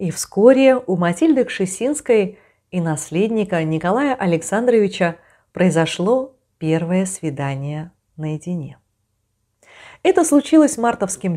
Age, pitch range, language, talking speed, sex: 30-49, 155-230 Hz, Russian, 85 wpm, female